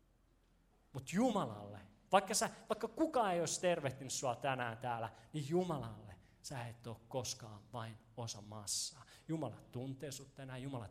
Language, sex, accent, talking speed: Finnish, male, native, 145 wpm